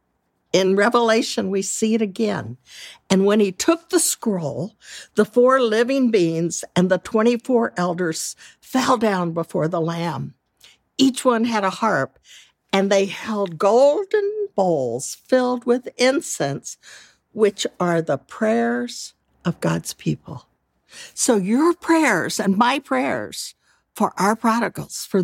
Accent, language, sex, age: American, English, female, 60-79